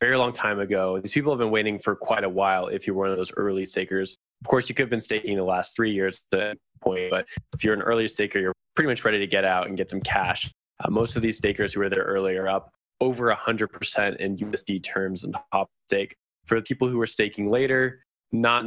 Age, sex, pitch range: 20-39, male, 95-115 Hz